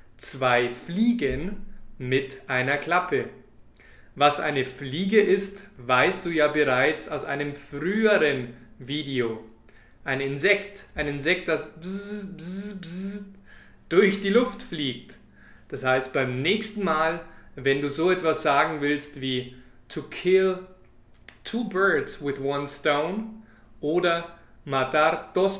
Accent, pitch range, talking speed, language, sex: German, 135-185 Hz, 115 wpm, German, male